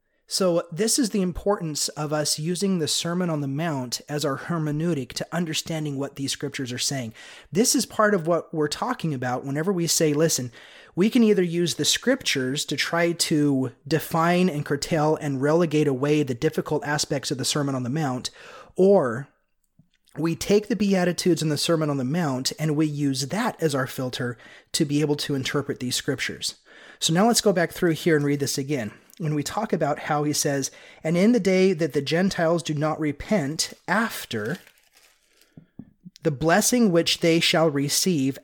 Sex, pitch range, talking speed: male, 145-180 Hz, 185 wpm